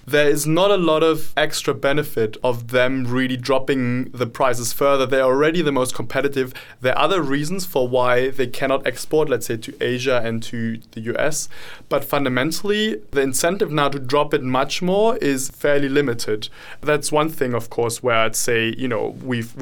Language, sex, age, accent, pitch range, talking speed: English, male, 20-39, German, 130-155 Hz, 185 wpm